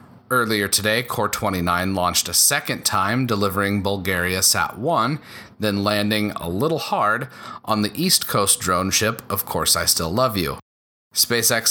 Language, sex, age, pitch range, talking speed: English, male, 30-49, 95-115 Hz, 150 wpm